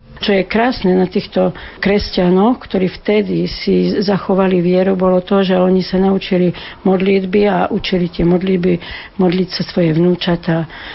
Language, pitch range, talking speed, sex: Slovak, 180-205 Hz, 145 wpm, female